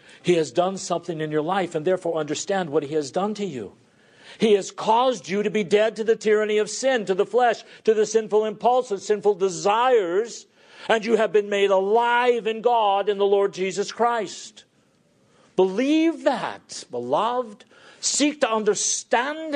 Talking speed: 170 wpm